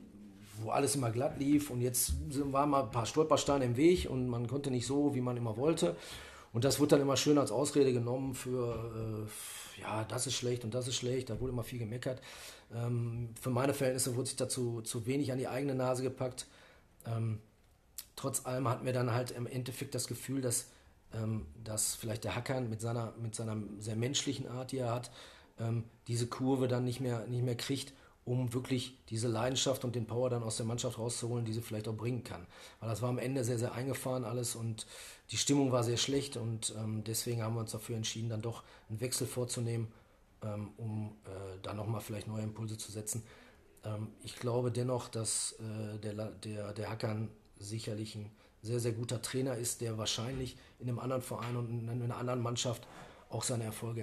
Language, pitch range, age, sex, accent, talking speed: German, 110-125 Hz, 40-59, male, German, 205 wpm